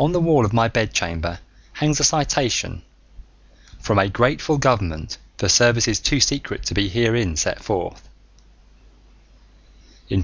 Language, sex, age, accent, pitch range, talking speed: English, male, 20-39, British, 85-120 Hz, 135 wpm